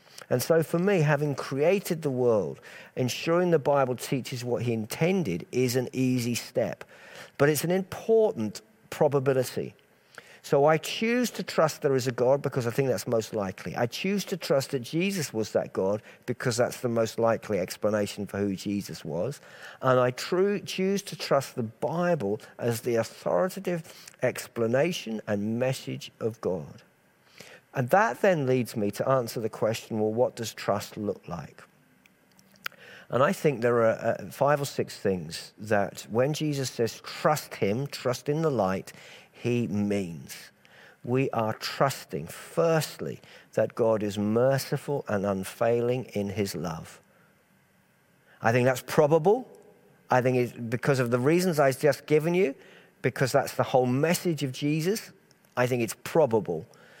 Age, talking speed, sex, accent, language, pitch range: 50-69, 155 wpm, male, British, English, 115-160 Hz